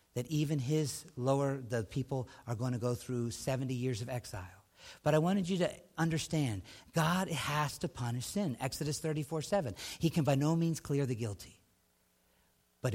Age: 50-69